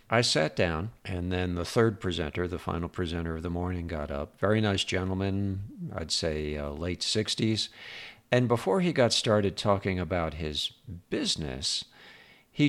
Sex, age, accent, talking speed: male, 50-69, American, 160 wpm